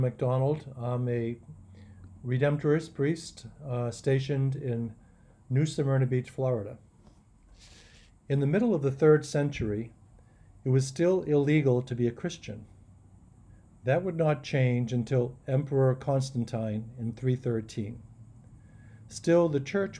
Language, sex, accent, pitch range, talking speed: English, male, American, 110-145 Hz, 115 wpm